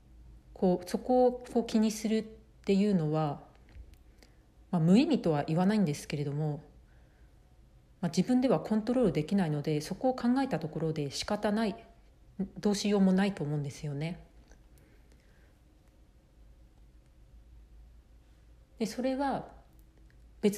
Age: 40-59